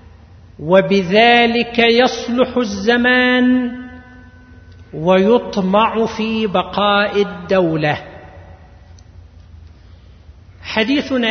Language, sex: Arabic, male